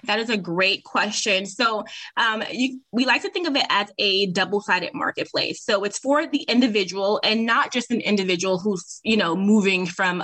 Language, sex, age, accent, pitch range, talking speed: English, female, 20-39, American, 195-230 Hz, 190 wpm